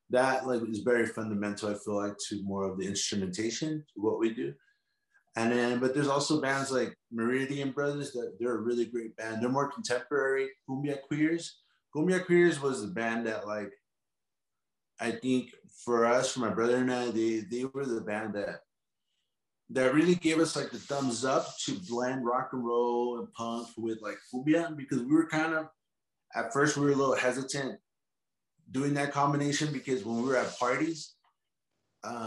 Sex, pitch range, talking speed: male, 120-150 Hz, 185 wpm